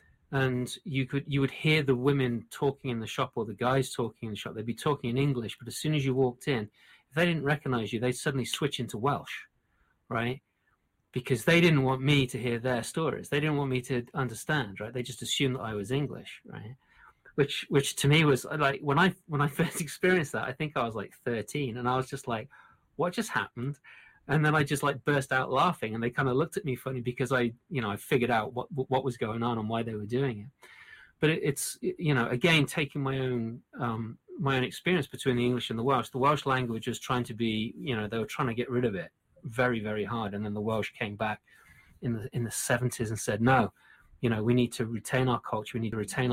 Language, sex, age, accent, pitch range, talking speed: English, male, 30-49, British, 115-140 Hz, 250 wpm